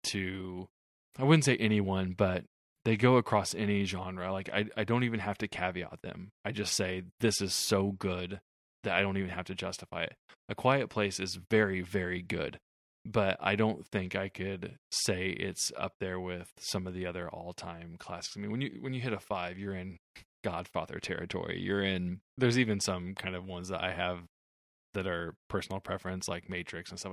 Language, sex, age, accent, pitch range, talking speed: English, male, 20-39, American, 90-110 Hz, 200 wpm